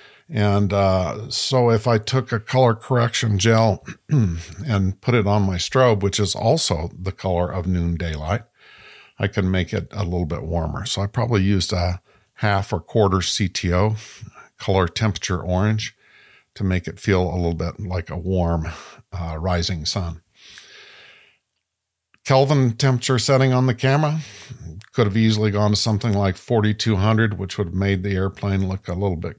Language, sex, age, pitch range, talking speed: English, male, 50-69, 90-115 Hz, 165 wpm